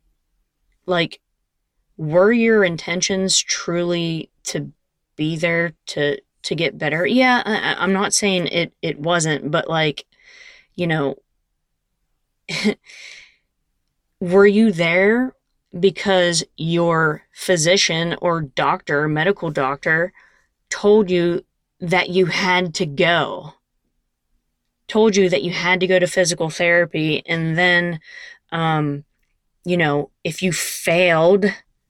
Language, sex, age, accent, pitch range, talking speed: English, female, 20-39, American, 155-185 Hz, 110 wpm